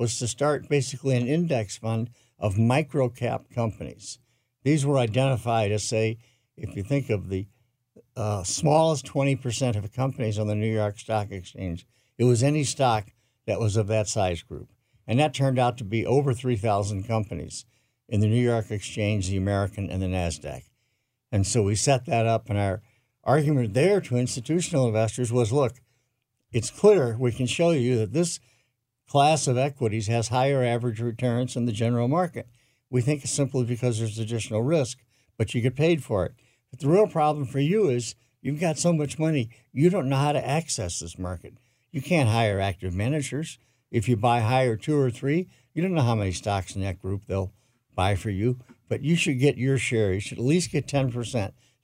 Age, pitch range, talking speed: 60-79, 110-135 Hz, 190 wpm